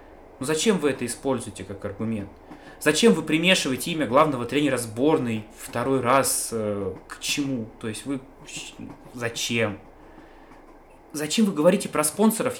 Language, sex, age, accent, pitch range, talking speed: Russian, male, 20-39, native, 115-170 Hz, 130 wpm